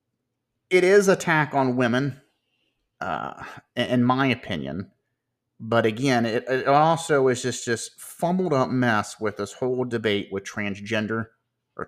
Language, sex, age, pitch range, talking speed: English, male, 30-49, 115-130 Hz, 135 wpm